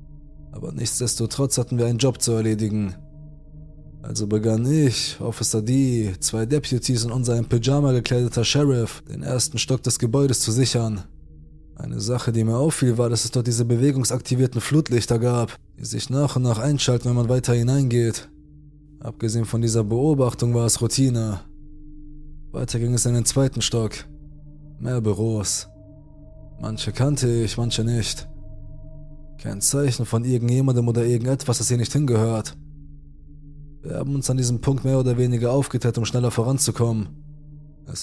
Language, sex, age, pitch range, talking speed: German, male, 20-39, 110-135 Hz, 150 wpm